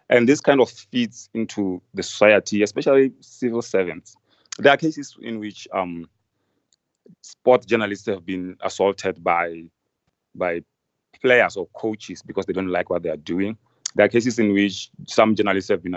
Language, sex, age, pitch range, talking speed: English, male, 30-49, 90-110 Hz, 165 wpm